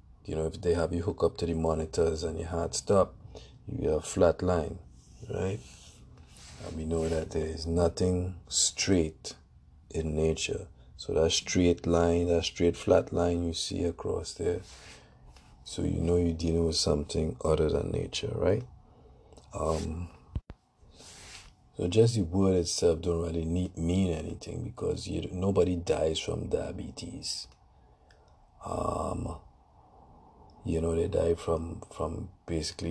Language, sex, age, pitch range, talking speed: English, male, 50-69, 80-90 Hz, 140 wpm